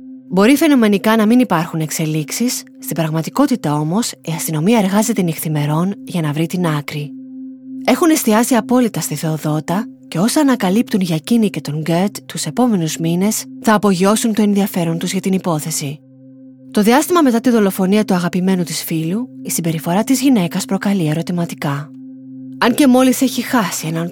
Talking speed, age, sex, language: 155 wpm, 20-39, female, Greek